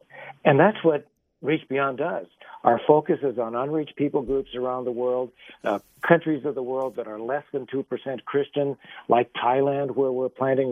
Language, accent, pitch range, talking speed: English, American, 125-145 Hz, 180 wpm